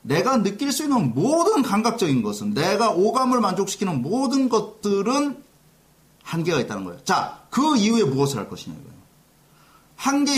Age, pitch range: 40-59, 155-230 Hz